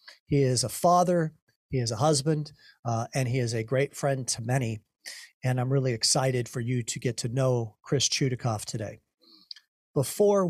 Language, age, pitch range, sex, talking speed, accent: English, 50-69, 130-155 Hz, male, 175 wpm, American